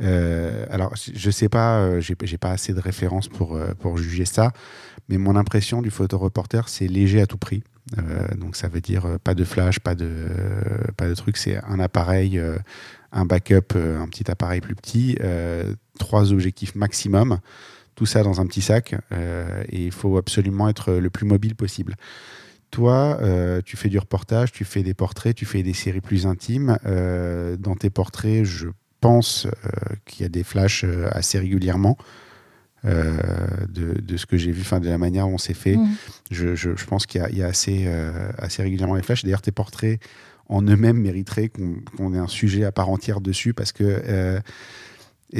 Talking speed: 200 wpm